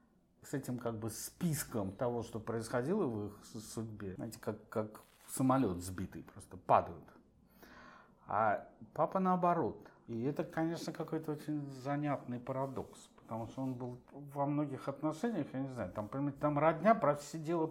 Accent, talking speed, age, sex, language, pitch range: native, 140 wpm, 50-69, male, Russian, 115-155 Hz